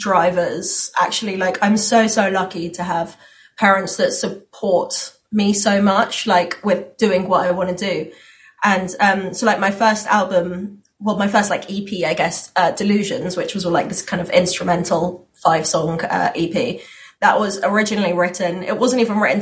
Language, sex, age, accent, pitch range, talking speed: English, female, 20-39, British, 180-215 Hz, 180 wpm